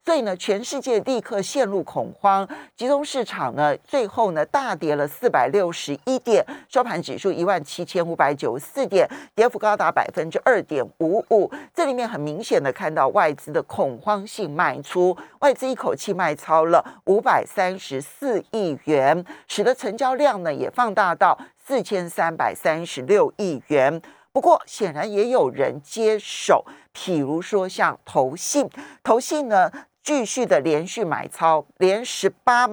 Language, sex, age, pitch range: Chinese, male, 40-59, 165-245 Hz